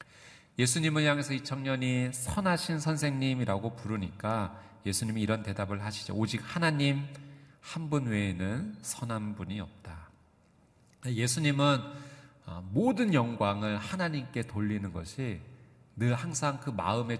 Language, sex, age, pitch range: Korean, male, 40-59, 105-140 Hz